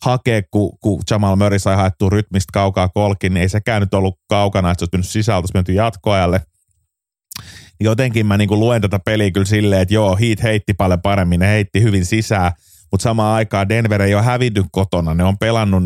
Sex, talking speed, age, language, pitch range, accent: male, 200 wpm, 30-49, Finnish, 85-105 Hz, native